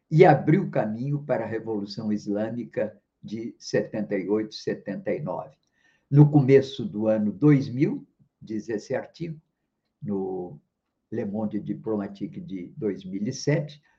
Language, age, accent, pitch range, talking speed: Portuguese, 50-69, Brazilian, 110-150 Hz, 105 wpm